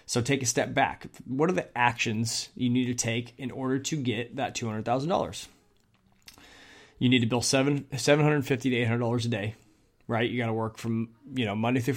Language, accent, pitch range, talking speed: English, American, 115-130 Hz, 230 wpm